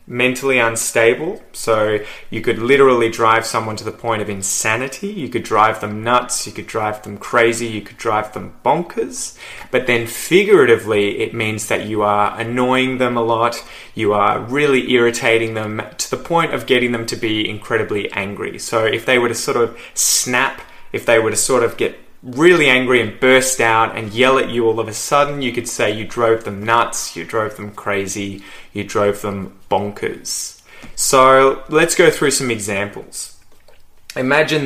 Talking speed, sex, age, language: 180 wpm, male, 20-39, English